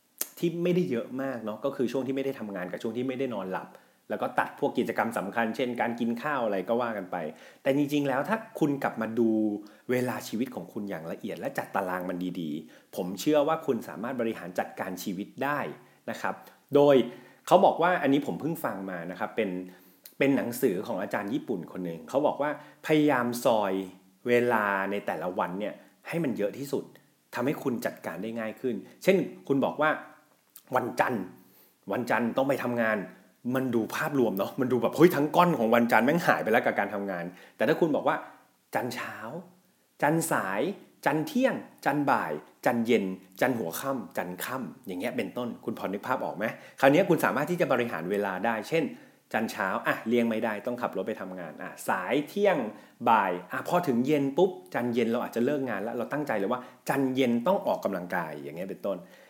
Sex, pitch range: male, 105-140 Hz